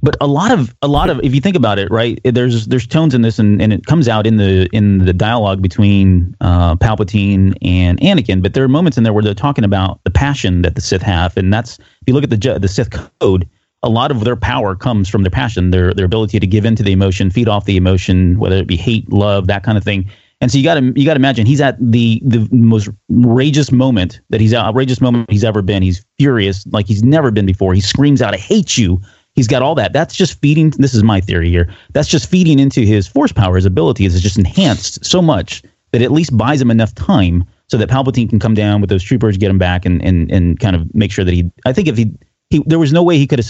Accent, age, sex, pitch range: American, 30-49, male, 95-125 Hz